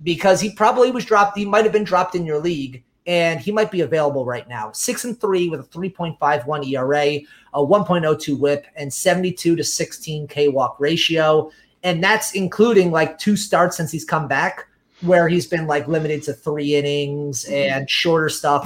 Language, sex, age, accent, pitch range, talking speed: English, male, 30-49, American, 145-190 Hz, 185 wpm